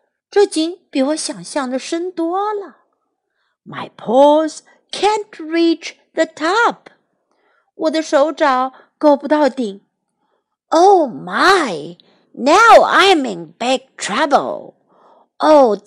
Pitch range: 260-340 Hz